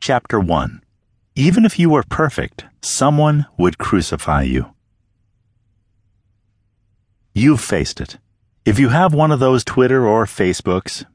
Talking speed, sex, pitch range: 125 wpm, male, 100-145 Hz